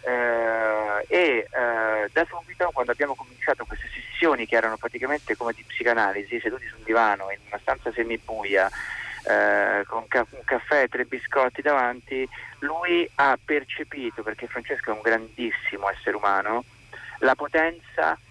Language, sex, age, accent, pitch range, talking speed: Italian, male, 30-49, native, 115-145 Hz, 145 wpm